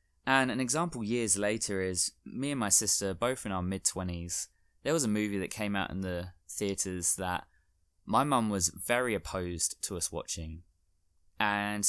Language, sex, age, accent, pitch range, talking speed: English, male, 20-39, British, 85-105 Hz, 170 wpm